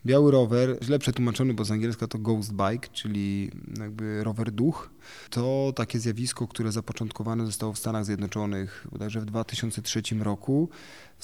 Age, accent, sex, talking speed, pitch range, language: 20-39, native, male, 150 wpm, 105-125 Hz, Polish